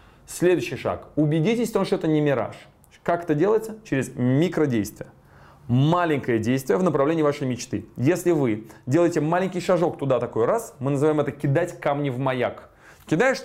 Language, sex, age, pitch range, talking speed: Russian, male, 20-39, 125-165 Hz, 155 wpm